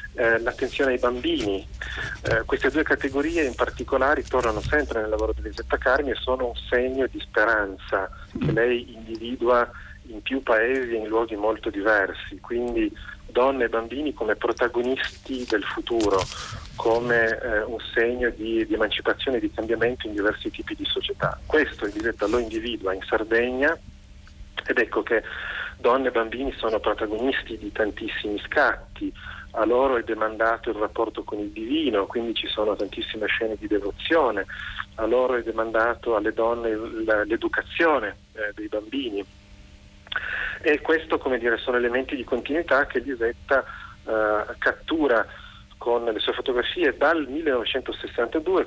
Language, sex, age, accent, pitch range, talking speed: Italian, male, 30-49, native, 110-140 Hz, 145 wpm